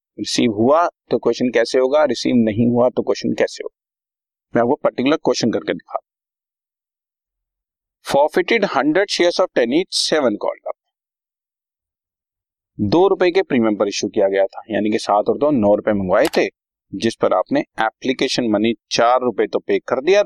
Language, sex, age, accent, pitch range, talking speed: Hindi, male, 40-59, native, 100-150 Hz, 155 wpm